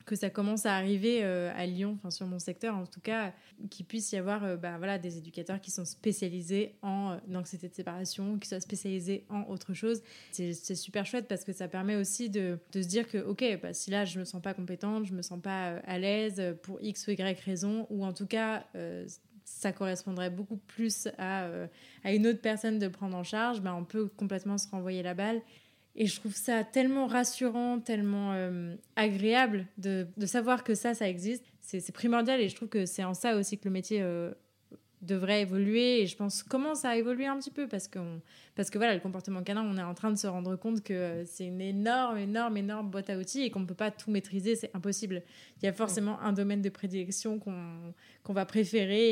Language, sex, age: French, female, 20-39